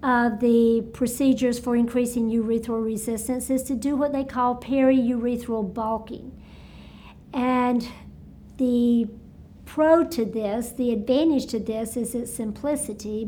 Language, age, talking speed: English, 50-69, 120 wpm